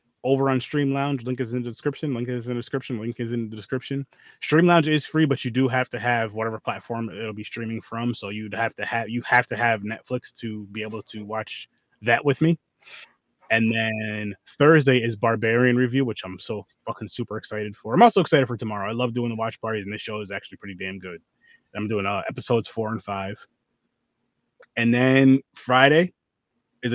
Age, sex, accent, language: 20-39, male, American, English